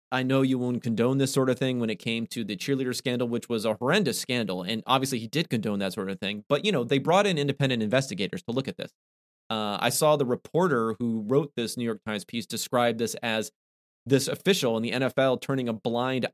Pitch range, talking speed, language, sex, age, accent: 115-140 Hz, 240 wpm, English, male, 30-49, American